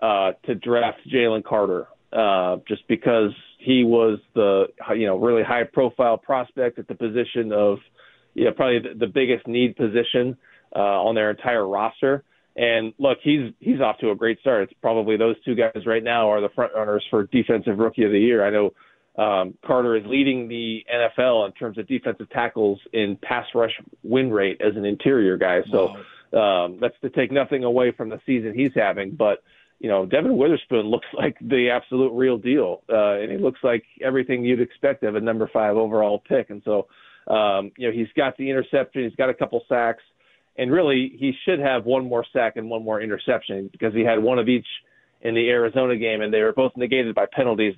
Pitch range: 110-130 Hz